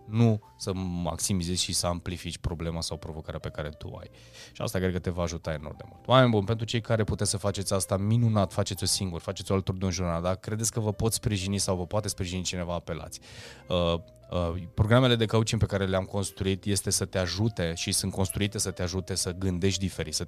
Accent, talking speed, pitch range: native, 220 wpm, 90-110 Hz